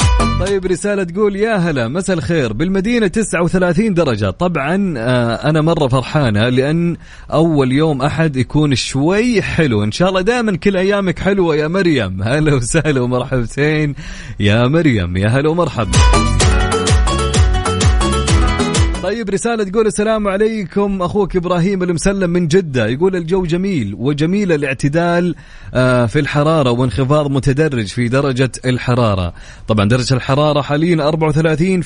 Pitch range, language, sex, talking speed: 115-165 Hz, English, male, 125 wpm